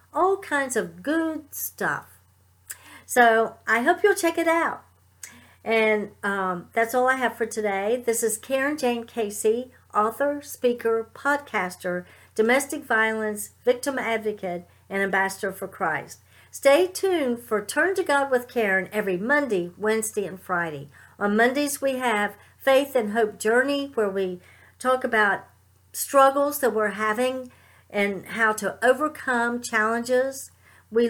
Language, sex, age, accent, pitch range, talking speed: English, female, 50-69, American, 210-270 Hz, 135 wpm